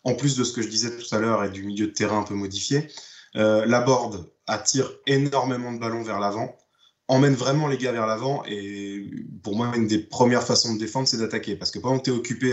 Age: 20-39